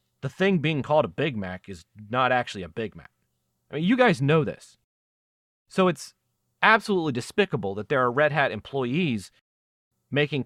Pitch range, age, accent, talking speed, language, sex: 105-155 Hz, 30-49, American, 170 wpm, English, male